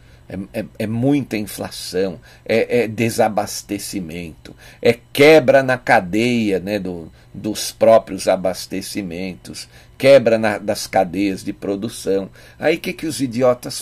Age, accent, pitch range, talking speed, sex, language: 50-69, Brazilian, 95-130 Hz, 125 wpm, male, Portuguese